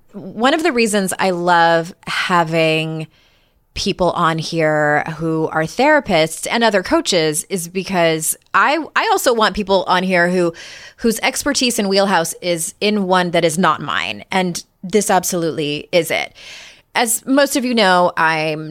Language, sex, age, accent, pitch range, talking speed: English, female, 30-49, American, 160-220 Hz, 155 wpm